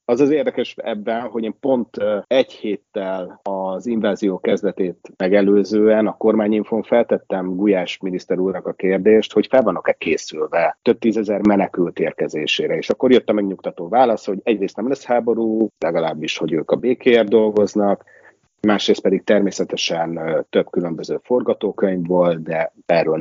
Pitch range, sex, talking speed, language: 100-115 Hz, male, 140 wpm, Hungarian